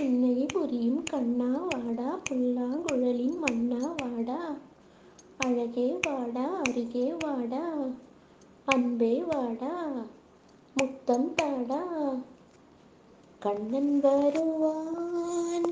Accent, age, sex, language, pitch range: native, 20-39, female, Tamil, 240-315 Hz